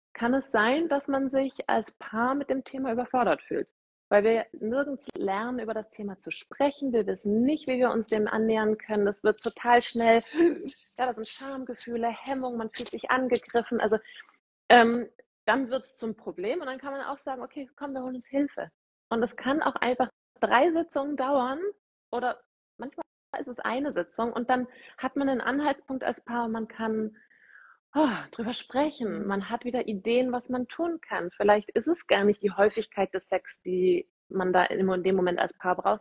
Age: 30-49